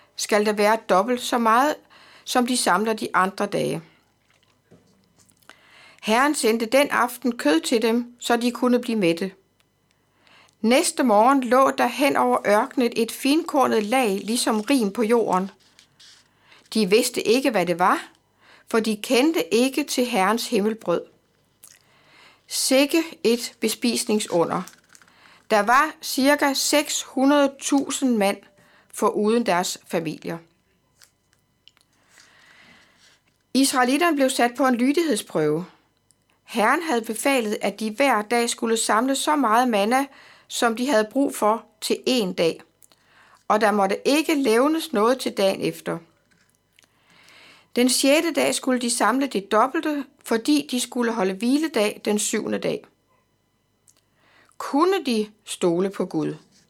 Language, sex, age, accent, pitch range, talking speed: Danish, female, 60-79, native, 210-270 Hz, 125 wpm